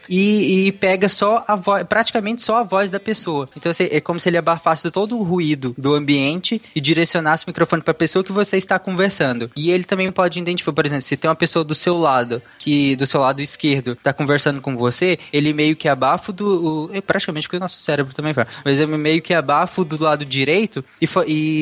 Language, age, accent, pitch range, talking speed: Portuguese, 20-39, Brazilian, 140-180 Hz, 220 wpm